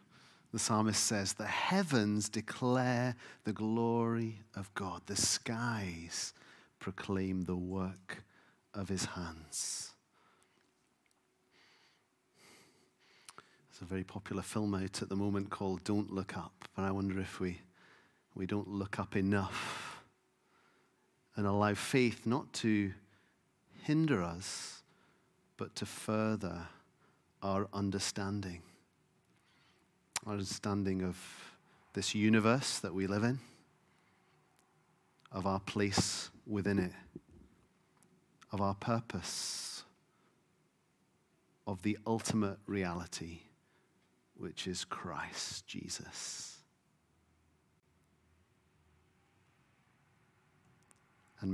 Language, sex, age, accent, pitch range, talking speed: English, male, 40-59, British, 95-110 Hz, 90 wpm